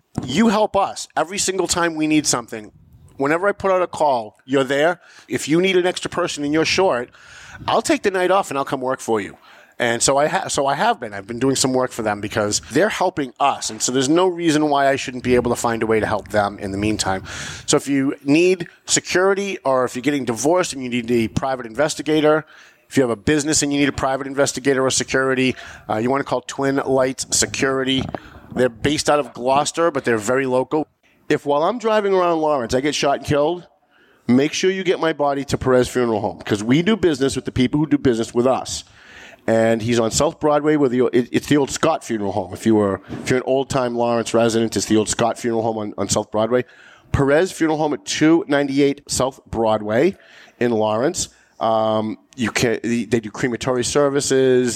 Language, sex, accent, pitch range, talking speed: English, male, American, 115-150 Hz, 220 wpm